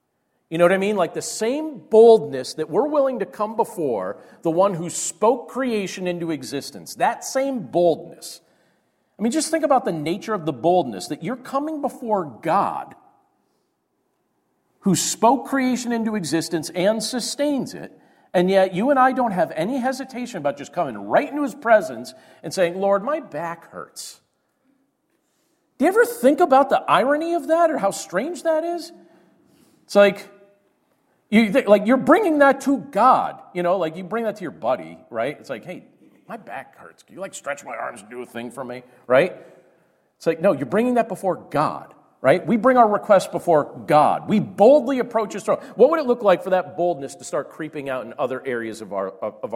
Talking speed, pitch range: 195 wpm, 170-265 Hz